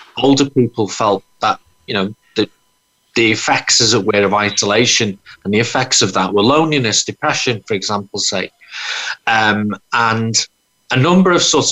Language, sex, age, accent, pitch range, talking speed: English, male, 40-59, British, 110-140 Hz, 155 wpm